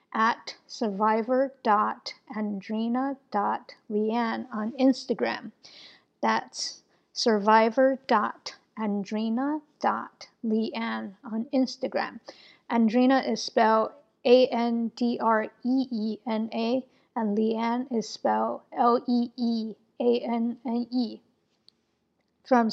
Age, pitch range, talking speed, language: 50-69, 220-255 Hz, 85 wpm, English